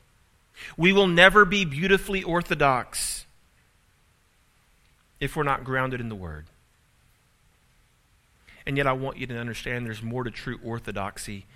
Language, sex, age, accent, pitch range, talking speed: English, male, 40-59, American, 125-180 Hz, 130 wpm